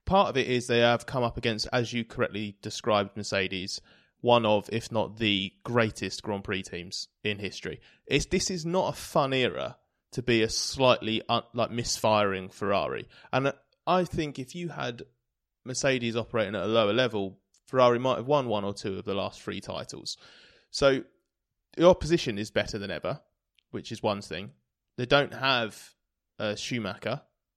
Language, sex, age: English, male, 20-39